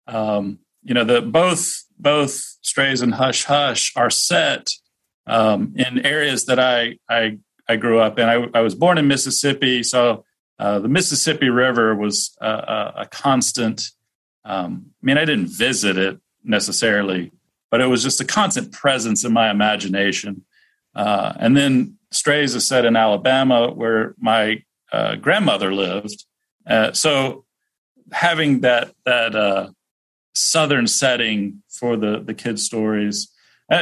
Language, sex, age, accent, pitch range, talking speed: English, male, 40-59, American, 105-135 Hz, 145 wpm